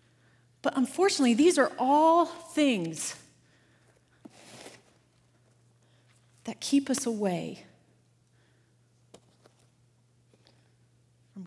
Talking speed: 60 wpm